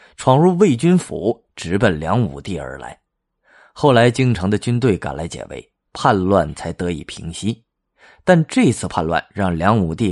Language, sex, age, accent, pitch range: Chinese, male, 20-39, native, 95-130 Hz